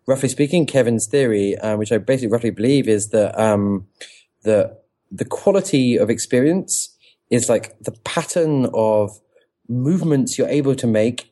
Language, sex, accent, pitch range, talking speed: English, male, British, 110-150 Hz, 150 wpm